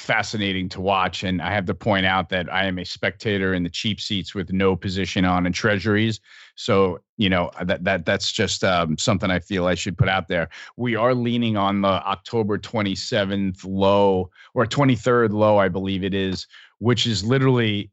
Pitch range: 95-110 Hz